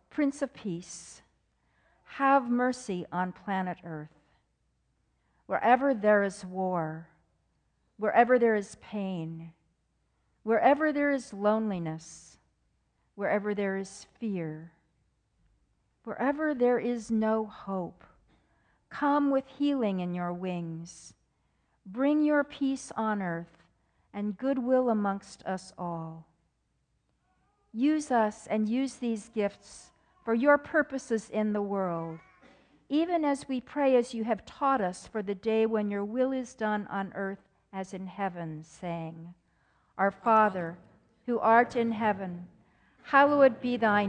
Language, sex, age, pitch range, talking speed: English, female, 50-69, 185-250 Hz, 120 wpm